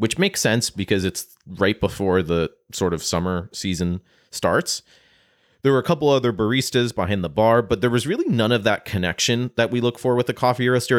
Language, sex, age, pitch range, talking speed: English, male, 30-49, 85-110 Hz, 205 wpm